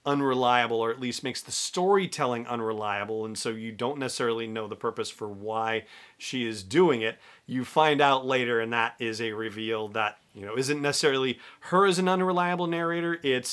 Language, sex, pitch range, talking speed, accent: English, male, 115-145 Hz, 185 wpm, American